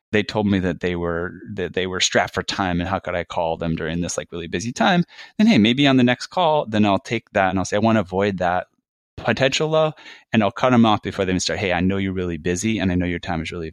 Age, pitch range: 30-49, 95-125 Hz